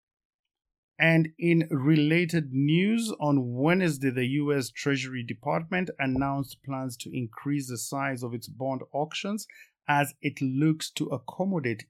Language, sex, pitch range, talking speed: English, male, 125-155 Hz, 125 wpm